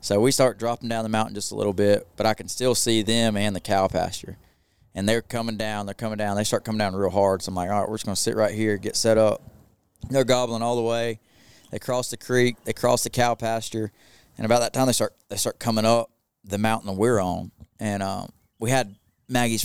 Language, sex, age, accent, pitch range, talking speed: English, male, 20-39, American, 105-125 Hz, 255 wpm